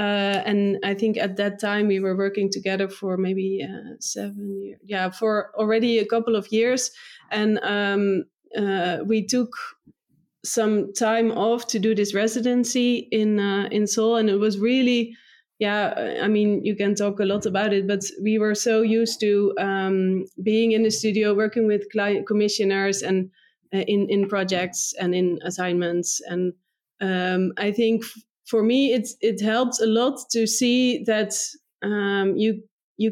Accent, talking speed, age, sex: Dutch, 170 wpm, 20-39, female